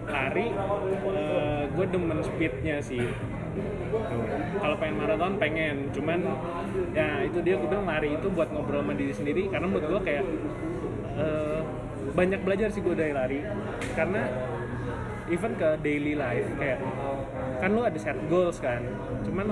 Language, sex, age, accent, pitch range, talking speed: Indonesian, male, 20-39, native, 140-180 Hz, 140 wpm